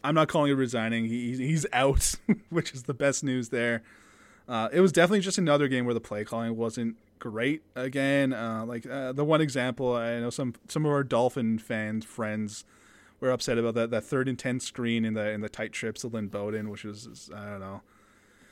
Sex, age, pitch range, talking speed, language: male, 20-39, 115-145 Hz, 215 wpm, English